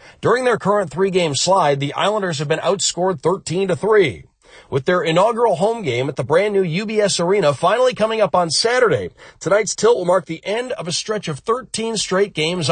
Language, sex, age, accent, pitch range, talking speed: English, male, 40-59, American, 155-200 Hz, 190 wpm